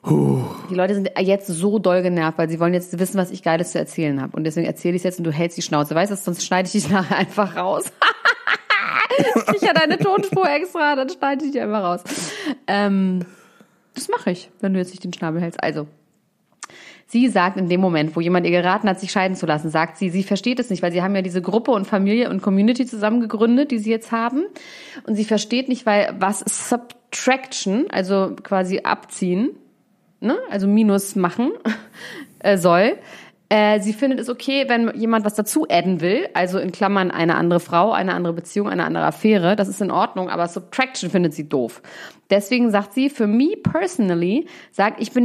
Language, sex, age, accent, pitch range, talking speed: German, female, 30-49, German, 180-235 Hz, 200 wpm